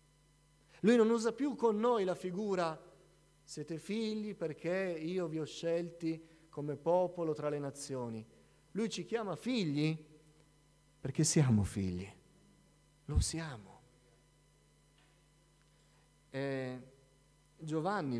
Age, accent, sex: 40-59, native, male